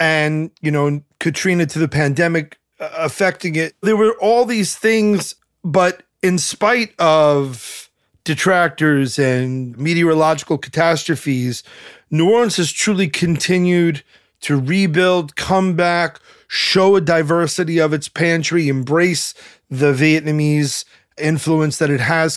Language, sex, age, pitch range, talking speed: English, male, 30-49, 145-180 Hz, 120 wpm